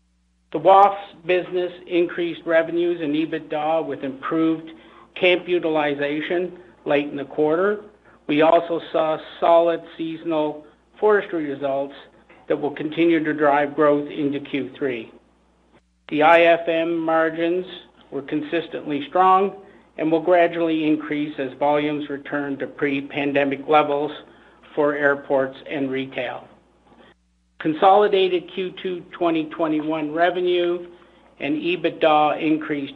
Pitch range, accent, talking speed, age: 140-170 Hz, American, 105 wpm, 50-69